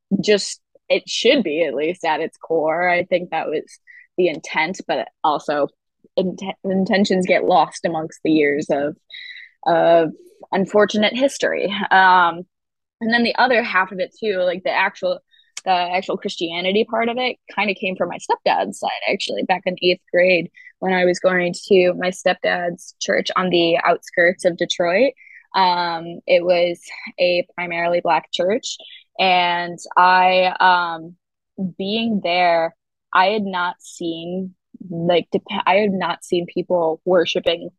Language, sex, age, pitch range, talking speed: English, female, 20-39, 175-205 Hz, 150 wpm